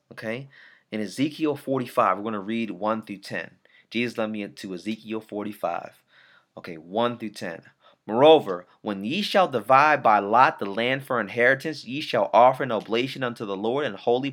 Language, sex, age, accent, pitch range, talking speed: English, male, 30-49, American, 115-140 Hz, 175 wpm